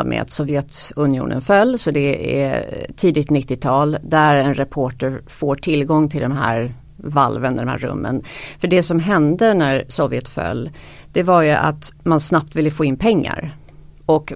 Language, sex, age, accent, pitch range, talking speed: Swedish, female, 40-59, native, 140-170 Hz, 165 wpm